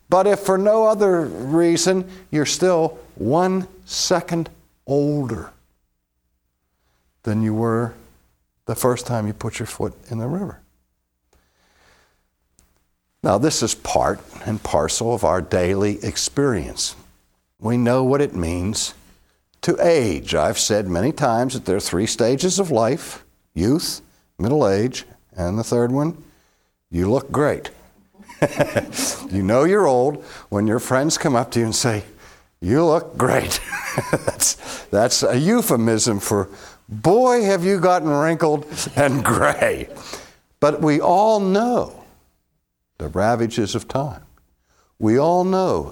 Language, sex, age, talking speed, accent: English, male, 60-79, 130 wpm, American